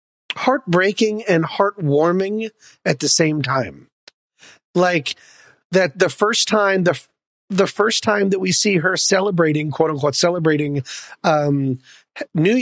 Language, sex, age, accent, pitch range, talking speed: English, male, 40-59, American, 150-200 Hz, 125 wpm